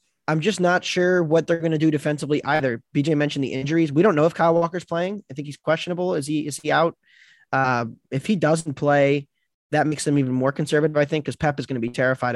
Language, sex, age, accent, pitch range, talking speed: English, male, 20-39, American, 130-145 Hz, 250 wpm